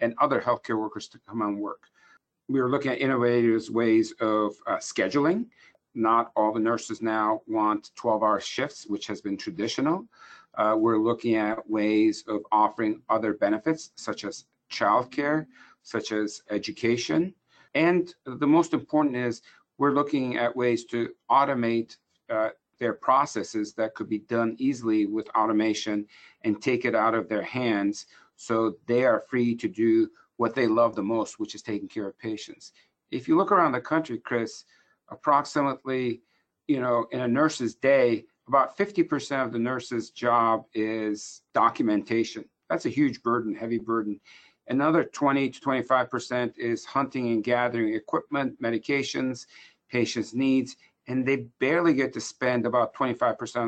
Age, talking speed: 50-69, 155 wpm